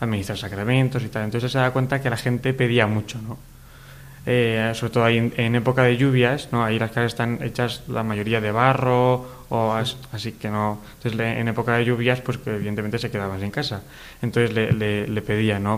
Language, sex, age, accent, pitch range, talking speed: Spanish, male, 20-39, Spanish, 110-130 Hz, 205 wpm